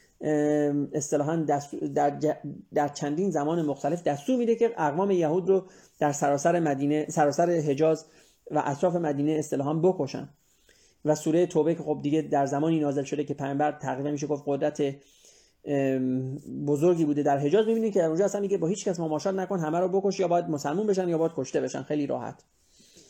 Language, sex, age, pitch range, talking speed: Persian, male, 30-49, 145-180 Hz, 170 wpm